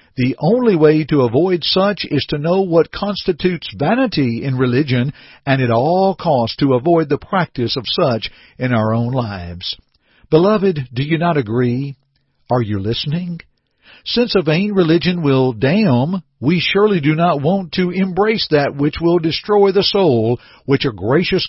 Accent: American